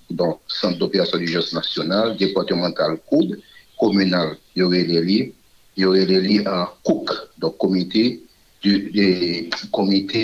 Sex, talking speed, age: male, 130 wpm, 50-69